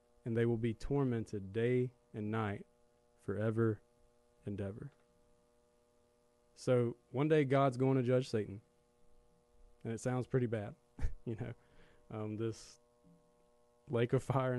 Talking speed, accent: 130 wpm, American